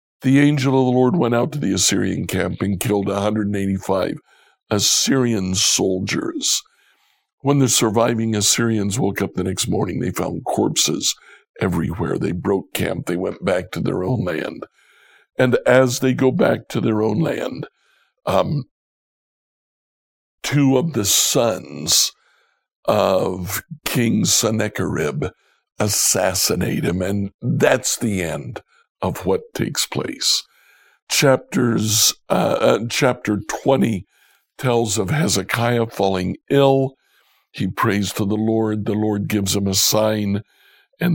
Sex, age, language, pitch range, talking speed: male, 60-79, English, 100-125 Hz, 125 wpm